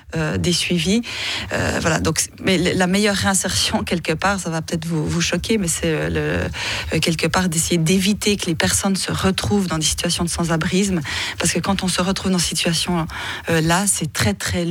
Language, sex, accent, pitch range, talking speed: French, female, French, 165-195 Hz, 200 wpm